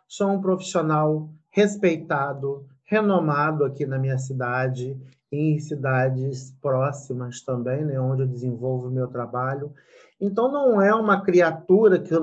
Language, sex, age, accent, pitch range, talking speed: Portuguese, male, 40-59, Brazilian, 150-255 Hz, 130 wpm